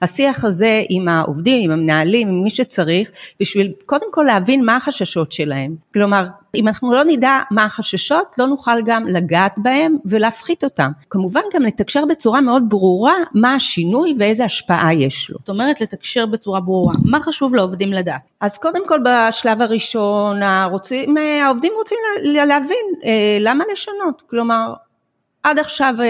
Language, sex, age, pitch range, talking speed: Hebrew, female, 40-59, 180-255 Hz, 150 wpm